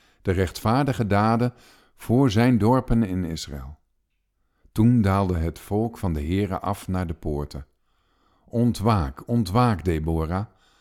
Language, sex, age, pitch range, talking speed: Dutch, male, 50-69, 85-115 Hz, 120 wpm